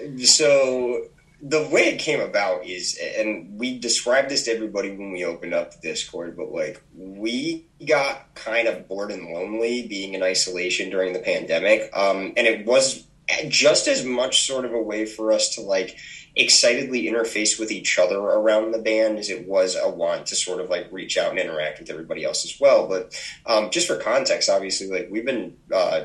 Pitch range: 105-135 Hz